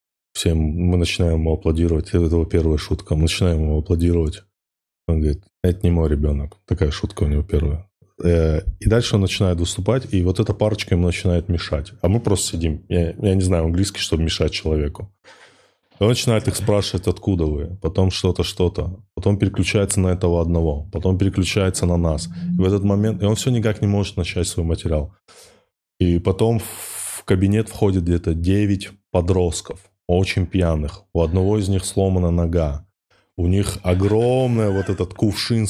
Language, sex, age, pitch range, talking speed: Russian, male, 20-39, 85-100 Hz, 170 wpm